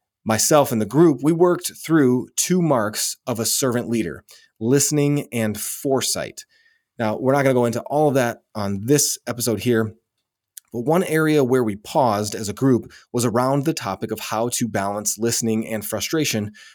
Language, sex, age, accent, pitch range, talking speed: English, male, 30-49, American, 110-135 Hz, 180 wpm